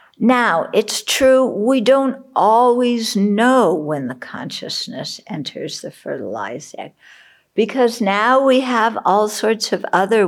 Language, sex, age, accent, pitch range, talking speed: English, female, 60-79, American, 170-240 Hz, 130 wpm